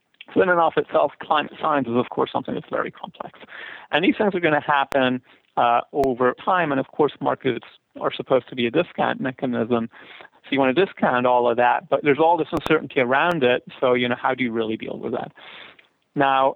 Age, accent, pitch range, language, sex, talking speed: 40-59, American, 120-140 Hz, English, male, 220 wpm